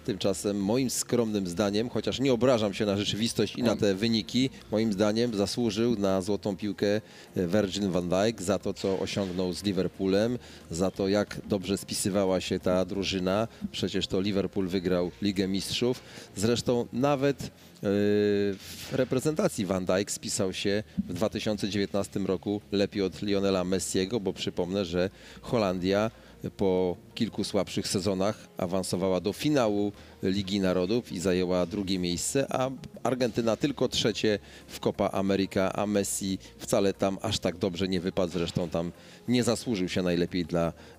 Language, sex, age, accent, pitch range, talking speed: Polish, male, 30-49, native, 95-110 Hz, 145 wpm